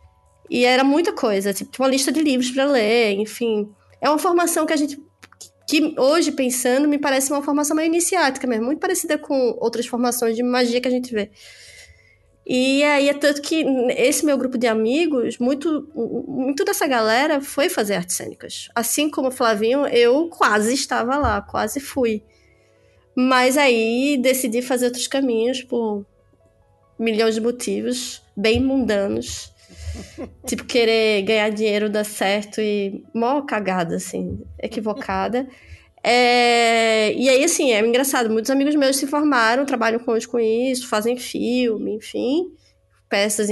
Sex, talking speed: female, 150 wpm